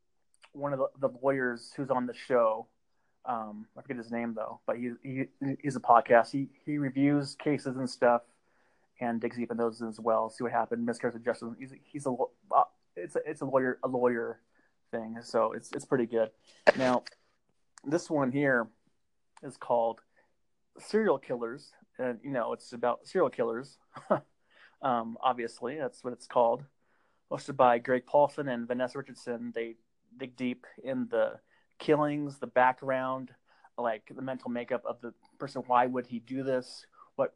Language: English